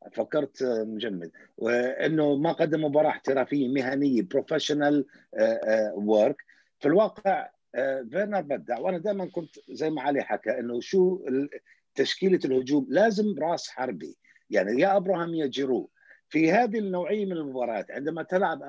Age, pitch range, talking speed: 50-69, 135-190 Hz, 130 wpm